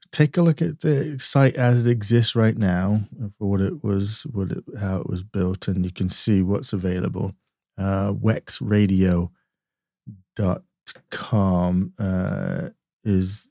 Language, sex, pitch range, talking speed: English, male, 95-105 Hz, 135 wpm